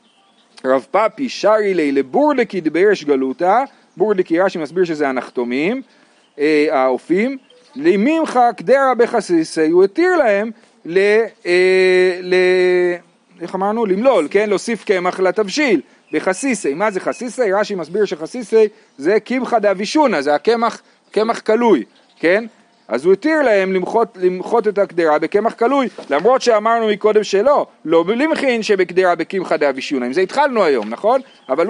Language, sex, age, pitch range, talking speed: Hebrew, male, 40-59, 180-255 Hz, 135 wpm